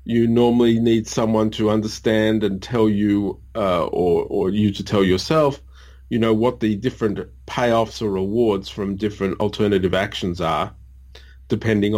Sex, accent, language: male, Australian, English